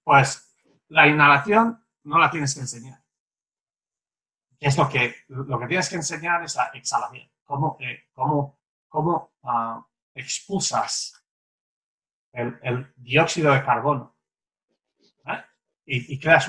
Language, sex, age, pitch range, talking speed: English, male, 30-49, 125-150 Hz, 125 wpm